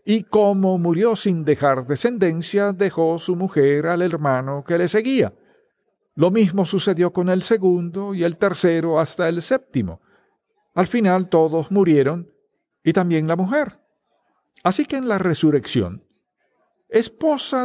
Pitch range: 125-185 Hz